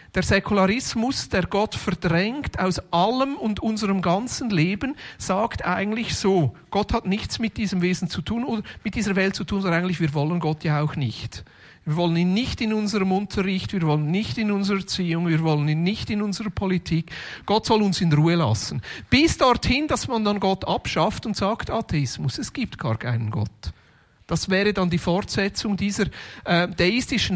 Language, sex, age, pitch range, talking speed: German, male, 40-59, 155-210 Hz, 185 wpm